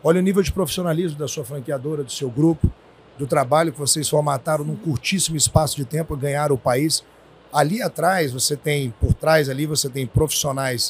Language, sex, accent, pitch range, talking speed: Portuguese, male, Brazilian, 130-160 Hz, 195 wpm